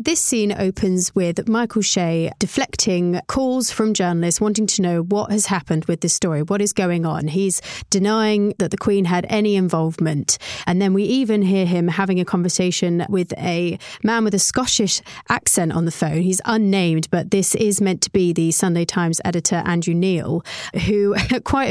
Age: 30-49